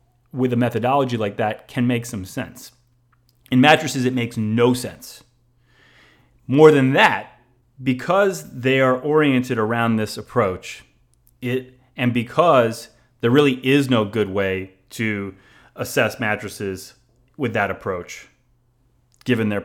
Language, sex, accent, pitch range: English, male, American, 110-130 Hz